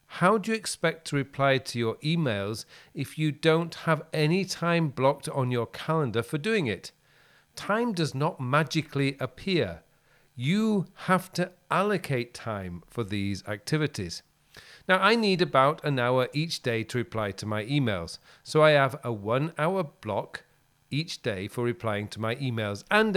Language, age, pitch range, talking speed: English, 40-59, 120-165 Hz, 165 wpm